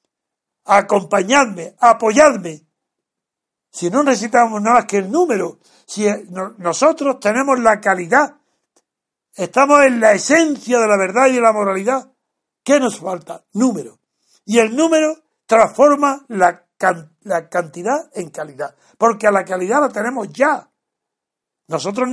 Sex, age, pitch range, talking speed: male, 60-79, 190-260 Hz, 125 wpm